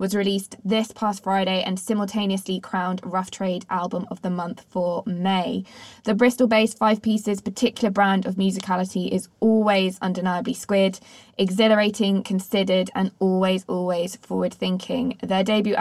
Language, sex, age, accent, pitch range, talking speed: English, female, 20-39, British, 185-215 Hz, 135 wpm